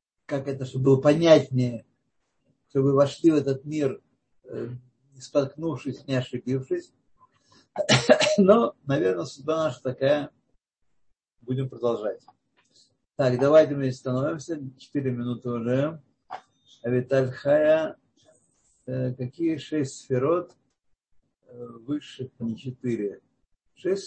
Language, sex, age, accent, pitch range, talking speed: Russian, male, 50-69, native, 125-155 Hz, 95 wpm